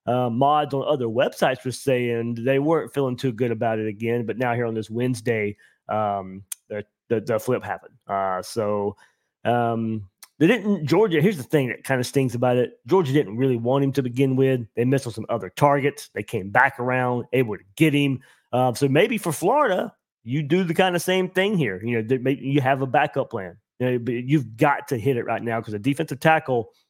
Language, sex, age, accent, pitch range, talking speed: English, male, 30-49, American, 115-140 Hz, 220 wpm